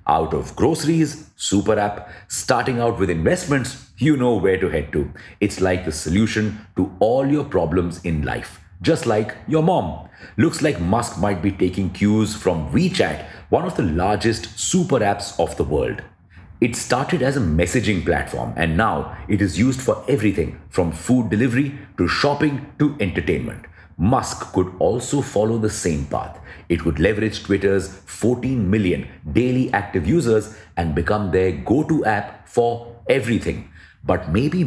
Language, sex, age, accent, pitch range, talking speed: English, male, 40-59, Indian, 90-120 Hz, 160 wpm